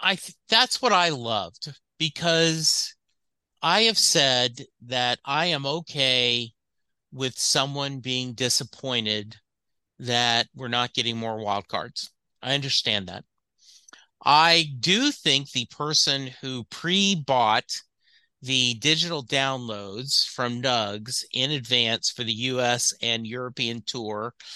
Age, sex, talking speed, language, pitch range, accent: 50-69, male, 115 wpm, English, 120-165 Hz, American